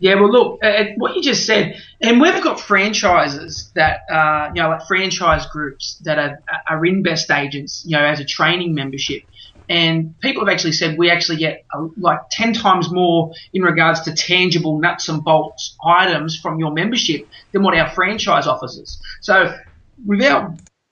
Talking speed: 180 wpm